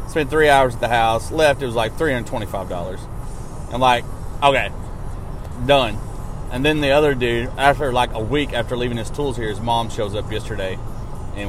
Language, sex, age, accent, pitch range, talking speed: English, male, 30-49, American, 110-160 Hz, 185 wpm